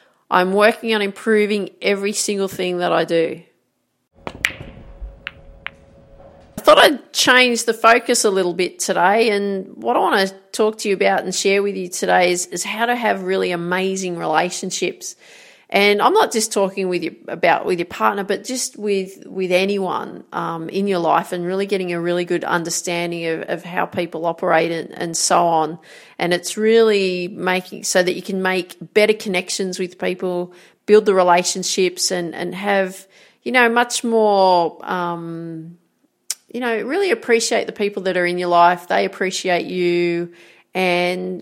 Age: 40-59